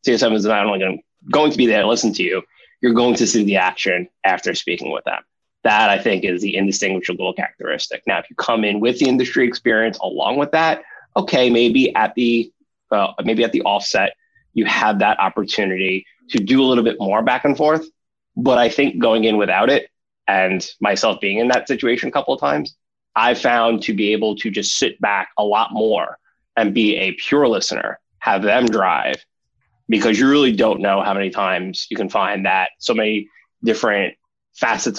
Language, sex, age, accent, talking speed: English, male, 20-39, American, 200 wpm